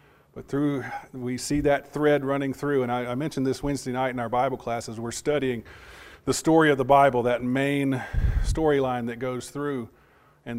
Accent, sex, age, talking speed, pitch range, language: American, male, 40-59, 185 wpm, 115-145 Hz, English